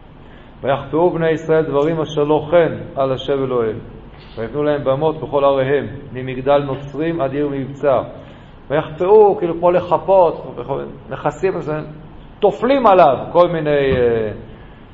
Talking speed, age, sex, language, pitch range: 115 wpm, 50-69, male, Hebrew, 140-190 Hz